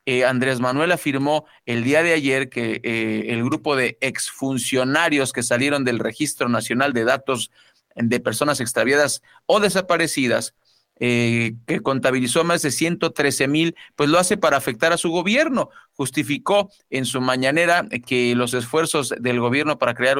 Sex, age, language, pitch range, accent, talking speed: male, 40-59, Spanish, 125-160 Hz, Mexican, 155 wpm